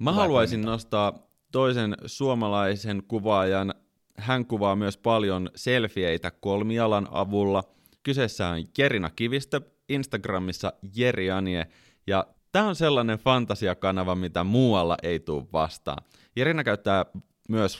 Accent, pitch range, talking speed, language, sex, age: native, 90-115 Hz, 110 wpm, Finnish, male, 30-49